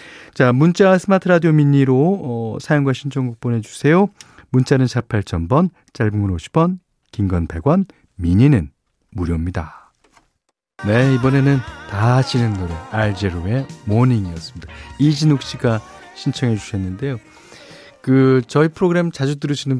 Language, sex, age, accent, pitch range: Korean, male, 40-59, native, 100-150 Hz